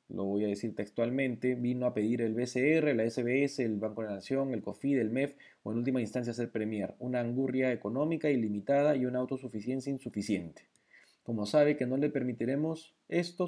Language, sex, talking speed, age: Spanish, male, 185 wpm, 20-39